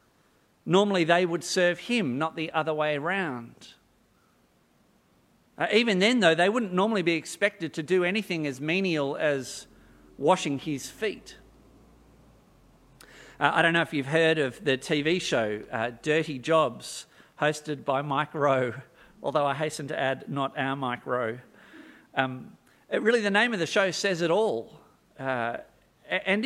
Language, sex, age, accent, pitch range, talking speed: English, male, 50-69, Australian, 145-195 Hz, 155 wpm